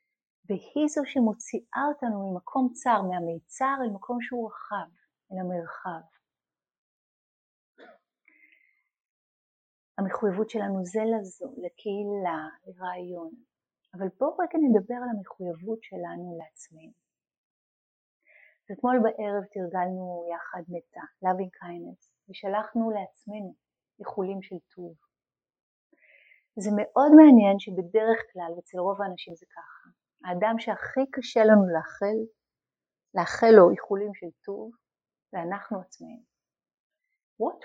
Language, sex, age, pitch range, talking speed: Hebrew, female, 30-49, 185-255 Hz, 100 wpm